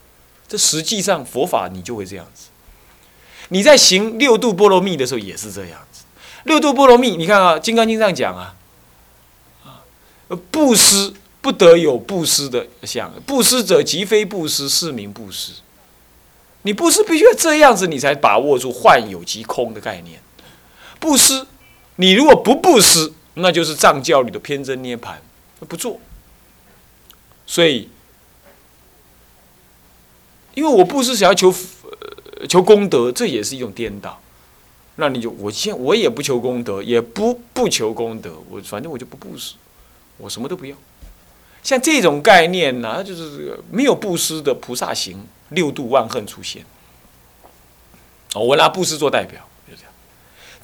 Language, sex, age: Chinese, male, 30-49